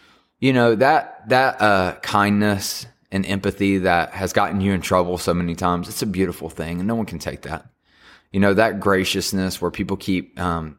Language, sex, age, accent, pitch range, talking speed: English, male, 20-39, American, 90-110 Hz, 195 wpm